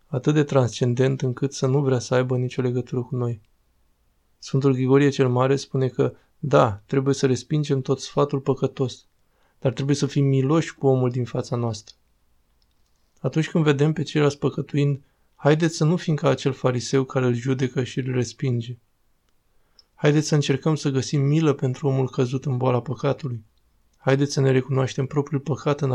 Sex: male